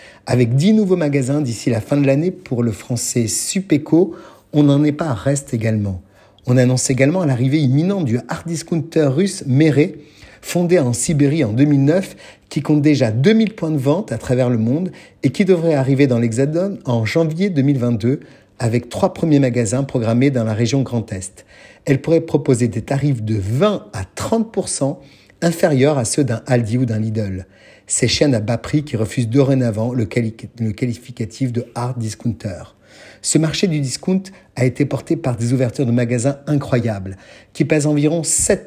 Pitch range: 115-150 Hz